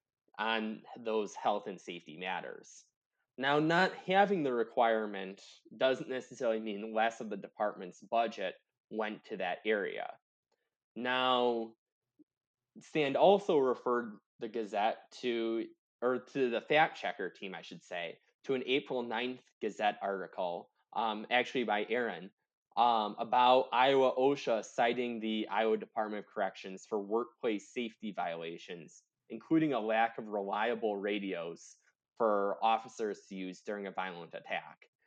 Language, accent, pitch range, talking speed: English, American, 105-125 Hz, 130 wpm